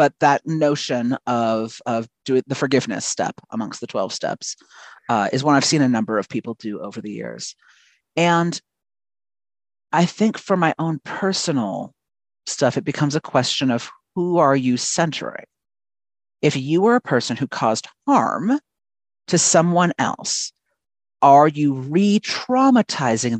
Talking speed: 145 wpm